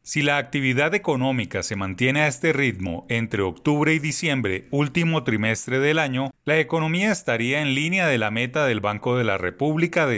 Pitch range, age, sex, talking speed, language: 115-155 Hz, 30-49, male, 185 wpm, Spanish